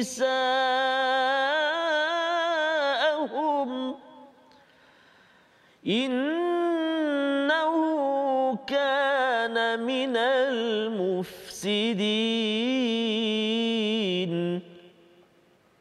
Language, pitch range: Malayalam, 220-260 Hz